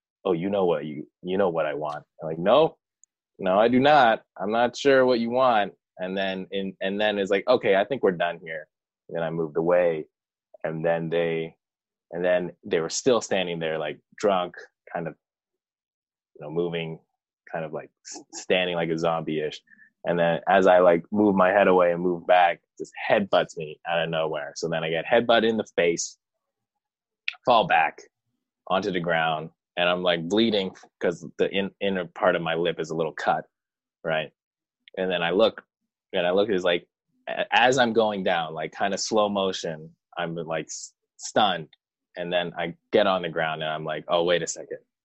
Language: English